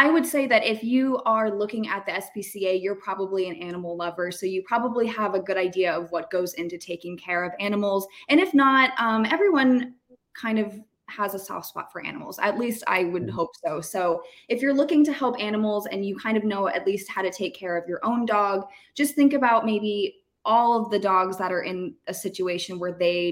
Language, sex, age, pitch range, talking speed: English, female, 20-39, 180-230 Hz, 225 wpm